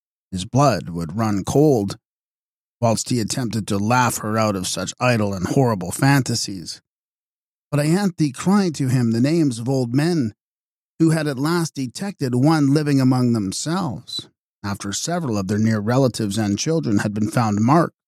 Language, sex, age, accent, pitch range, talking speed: English, male, 50-69, American, 110-150 Hz, 165 wpm